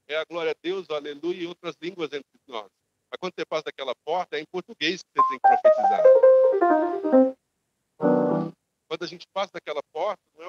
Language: Portuguese